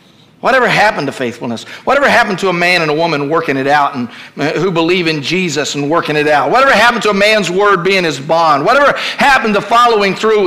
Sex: male